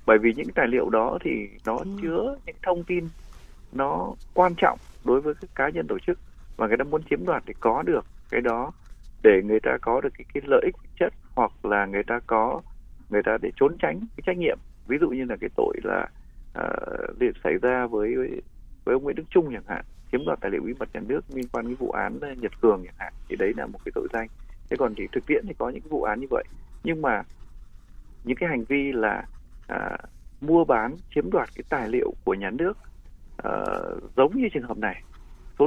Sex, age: male, 20-39